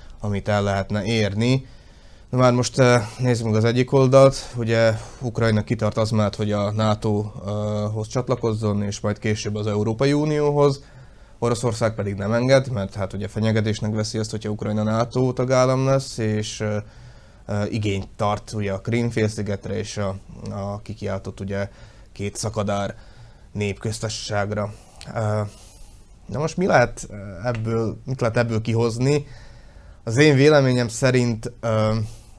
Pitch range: 105-120 Hz